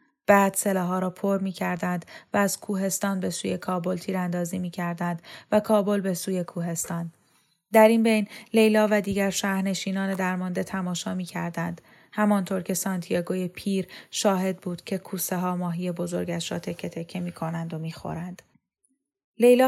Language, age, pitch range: Persian, 10-29, 180-205 Hz